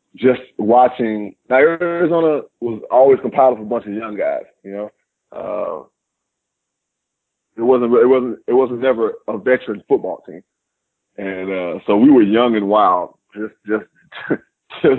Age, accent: 20-39, American